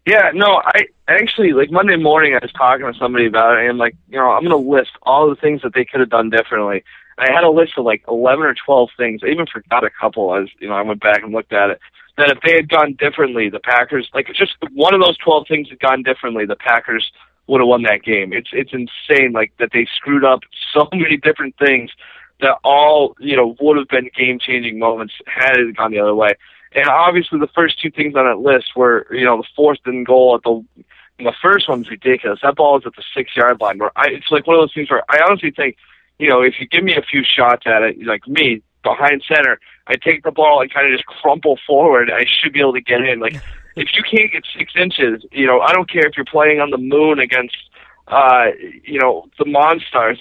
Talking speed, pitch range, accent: 245 wpm, 120-150 Hz, American